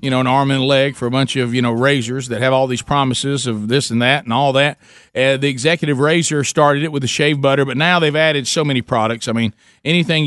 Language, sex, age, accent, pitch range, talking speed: English, male, 40-59, American, 125-155 Hz, 270 wpm